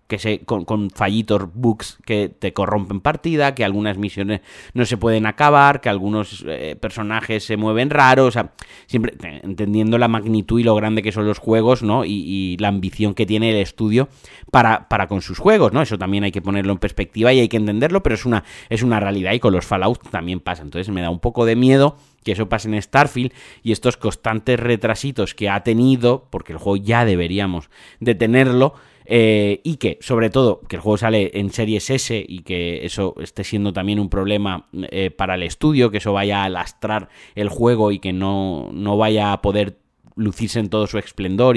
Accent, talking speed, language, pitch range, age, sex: Spanish, 210 wpm, Spanish, 95-115 Hz, 30-49, male